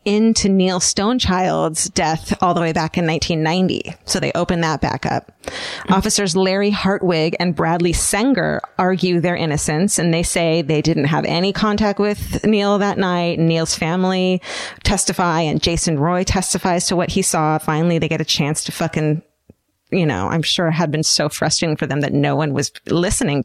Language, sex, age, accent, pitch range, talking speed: English, female, 30-49, American, 160-190 Hz, 180 wpm